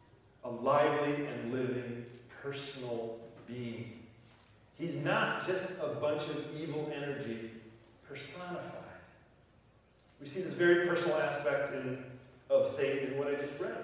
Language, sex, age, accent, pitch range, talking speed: English, male, 40-59, American, 125-175 Hz, 120 wpm